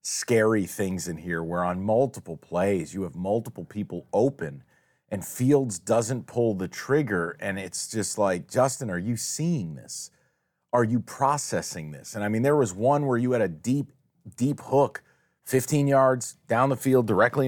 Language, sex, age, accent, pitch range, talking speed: English, male, 30-49, American, 95-130 Hz, 175 wpm